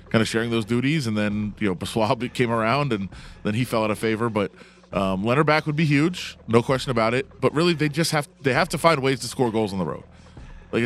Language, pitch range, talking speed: English, 110-140 Hz, 260 wpm